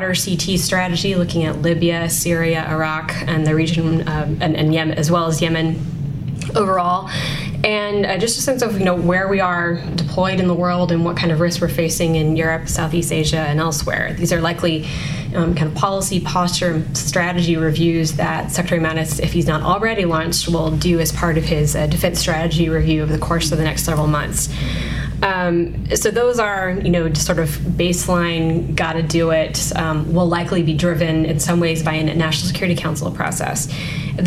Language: English